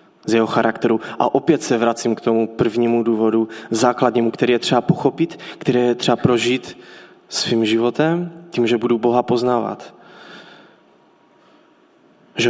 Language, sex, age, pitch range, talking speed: Czech, male, 20-39, 110-130 Hz, 135 wpm